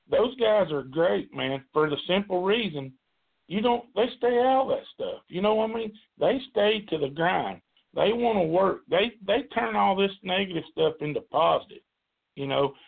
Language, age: English, 50-69